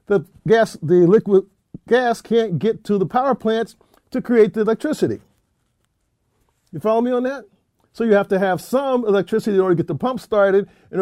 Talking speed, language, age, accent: 190 wpm, English, 50-69, American